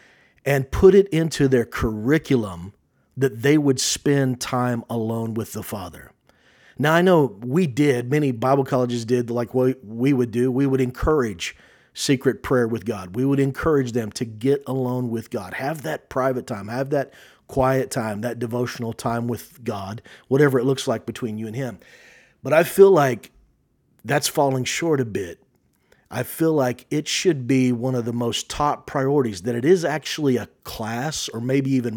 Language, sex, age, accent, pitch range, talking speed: English, male, 40-59, American, 115-135 Hz, 180 wpm